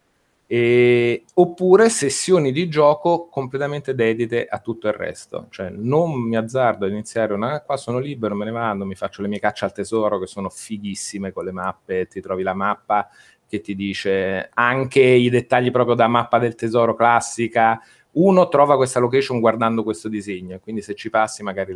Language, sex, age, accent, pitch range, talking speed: Italian, male, 30-49, native, 105-130 Hz, 180 wpm